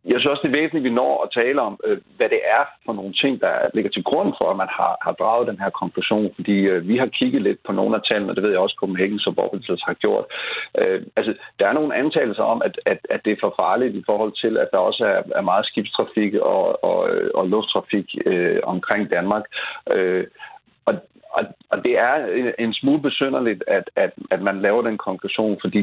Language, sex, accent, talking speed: Danish, male, native, 230 wpm